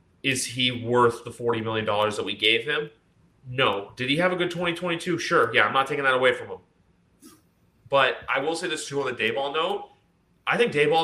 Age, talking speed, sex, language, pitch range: 30-49, 215 wpm, male, English, 115-135 Hz